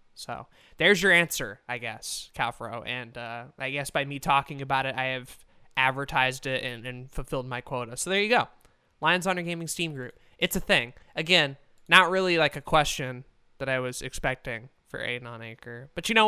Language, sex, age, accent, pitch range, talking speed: English, male, 20-39, American, 130-180 Hz, 200 wpm